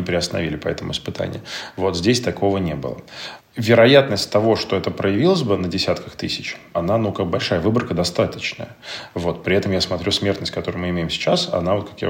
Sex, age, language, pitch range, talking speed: male, 30-49, Russian, 90-105 Hz, 185 wpm